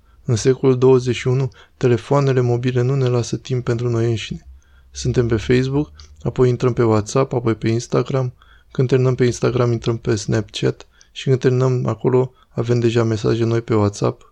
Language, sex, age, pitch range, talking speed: Romanian, male, 20-39, 115-130 Hz, 165 wpm